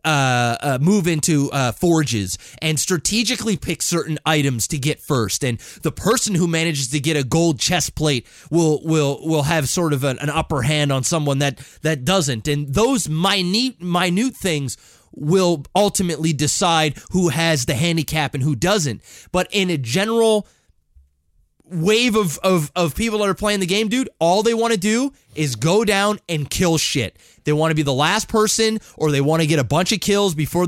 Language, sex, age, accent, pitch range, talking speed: English, male, 20-39, American, 150-195 Hz, 190 wpm